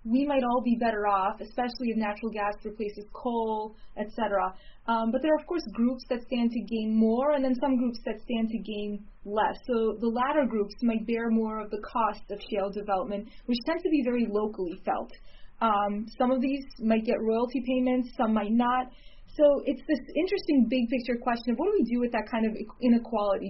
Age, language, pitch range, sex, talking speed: 20-39, English, 215-255 Hz, female, 210 wpm